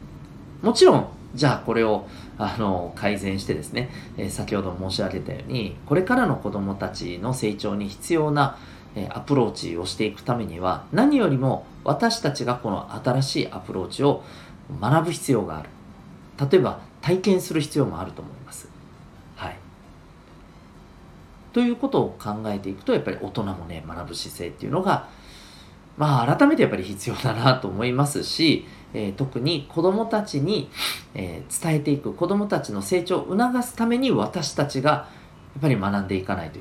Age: 40-59